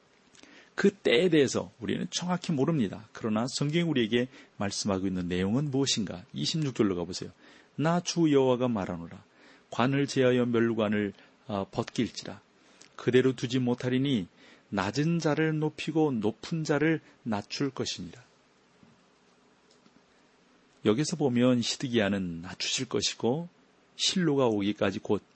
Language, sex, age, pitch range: Korean, male, 40-59, 105-145 Hz